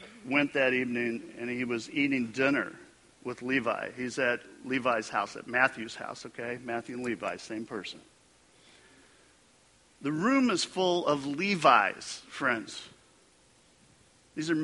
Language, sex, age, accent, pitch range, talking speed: English, male, 50-69, American, 120-150 Hz, 130 wpm